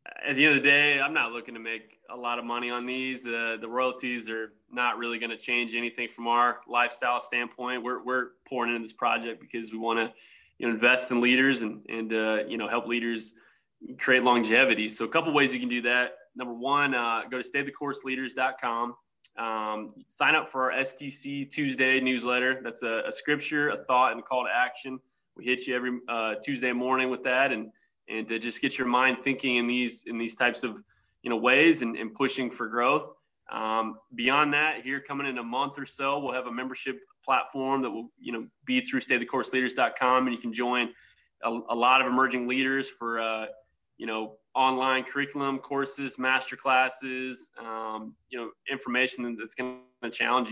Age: 20-39